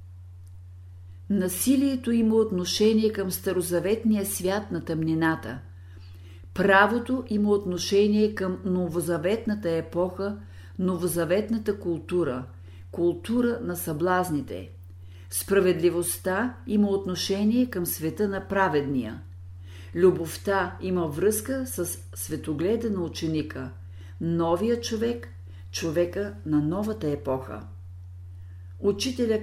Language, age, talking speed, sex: Bulgarian, 50-69, 80 wpm, female